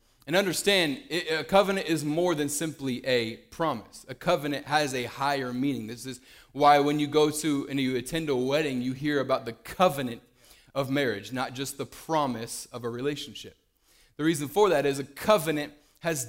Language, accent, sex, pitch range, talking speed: English, American, male, 130-155 Hz, 185 wpm